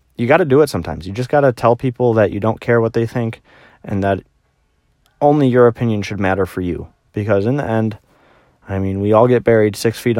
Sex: male